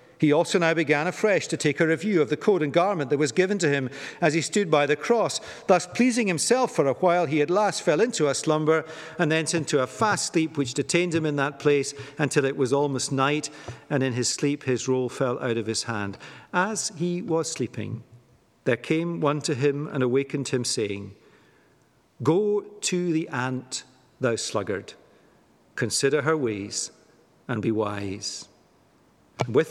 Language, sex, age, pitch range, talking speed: English, male, 50-69, 130-165 Hz, 185 wpm